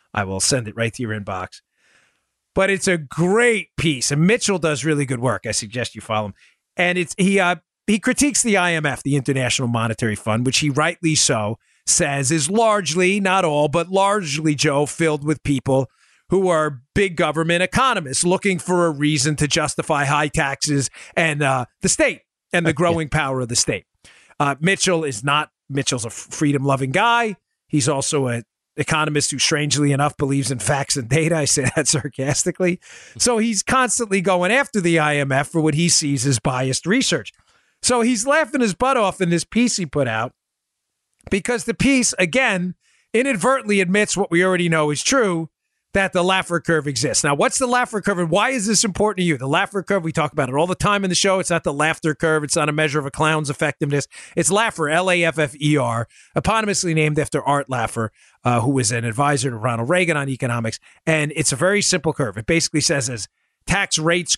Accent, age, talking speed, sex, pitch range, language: American, 40-59, 195 wpm, male, 140-185 Hz, English